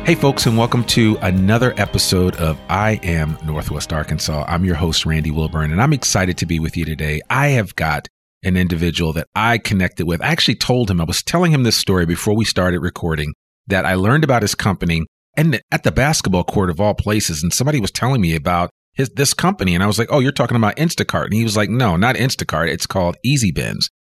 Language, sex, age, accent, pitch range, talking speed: English, male, 40-59, American, 85-115 Hz, 225 wpm